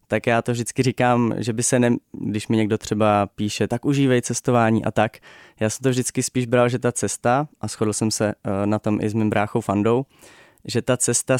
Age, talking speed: 20-39, 220 wpm